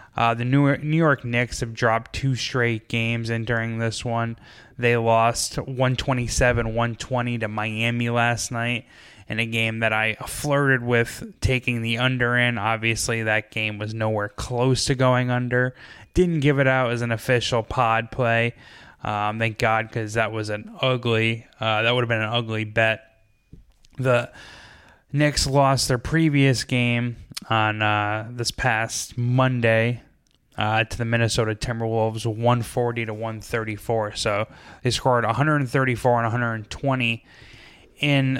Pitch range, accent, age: 115-125 Hz, American, 10-29